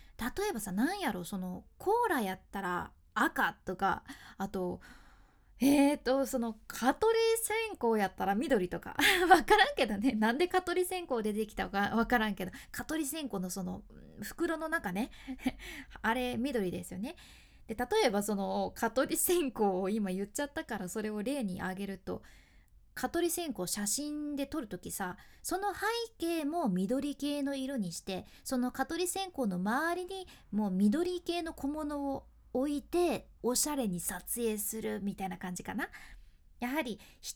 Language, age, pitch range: Japanese, 20-39, 205-295 Hz